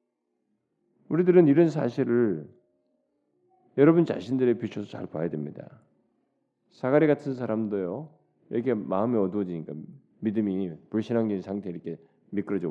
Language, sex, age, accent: Korean, male, 40-59, native